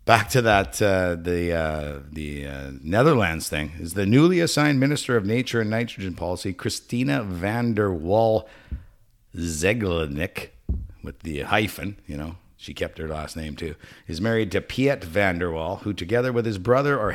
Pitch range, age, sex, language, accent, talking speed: 90-125 Hz, 50-69, male, English, American, 170 wpm